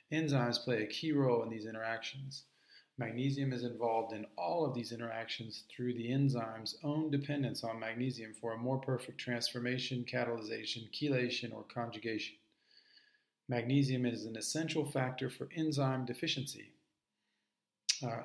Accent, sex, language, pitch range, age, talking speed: American, male, English, 115-135 Hz, 40-59, 135 wpm